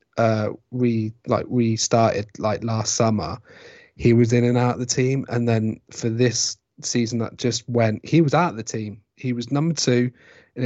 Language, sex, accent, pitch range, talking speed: English, male, British, 110-125 Hz, 195 wpm